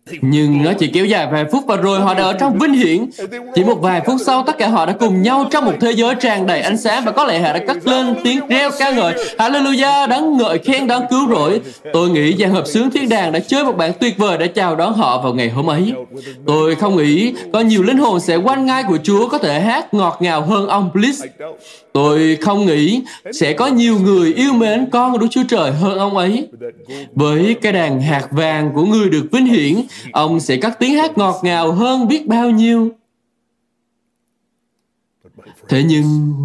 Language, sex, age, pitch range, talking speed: Vietnamese, male, 20-39, 165-255 Hz, 220 wpm